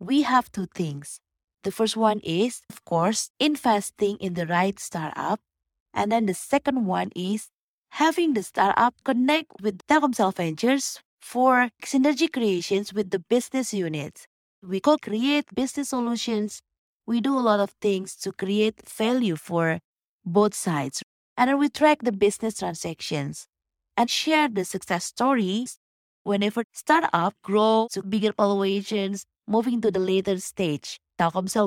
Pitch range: 190-245 Hz